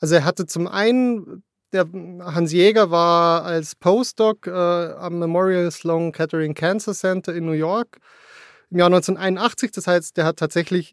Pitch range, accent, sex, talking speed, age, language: 160-185 Hz, German, male, 160 wpm, 30-49, German